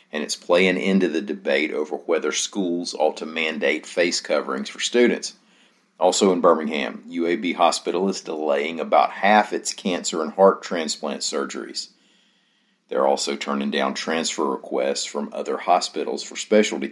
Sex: male